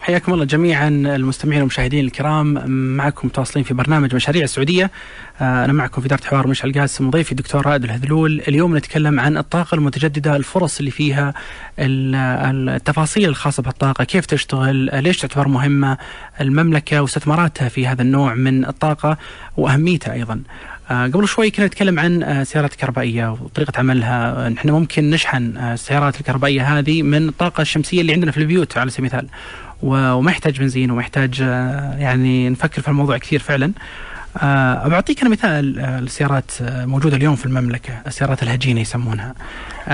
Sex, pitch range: male, 130-155 Hz